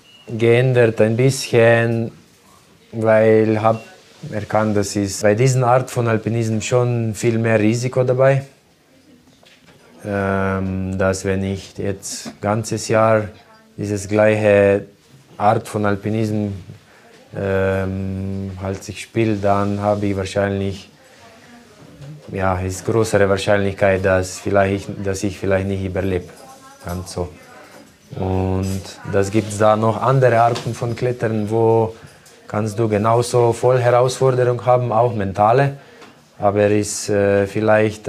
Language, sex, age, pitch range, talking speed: German, male, 20-39, 95-115 Hz, 120 wpm